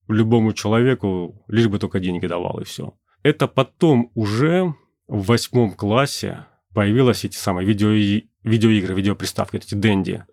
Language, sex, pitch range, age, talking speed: Russian, male, 95-120 Hz, 30-49, 135 wpm